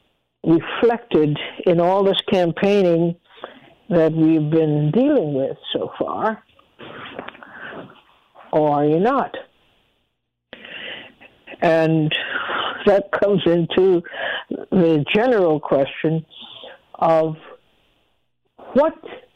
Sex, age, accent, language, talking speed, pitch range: female, 60-79, American, English, 80 wpm, 160-210 Hz